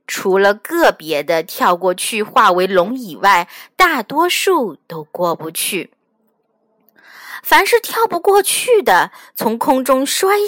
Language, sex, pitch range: Chinese, female, 215-340 Hz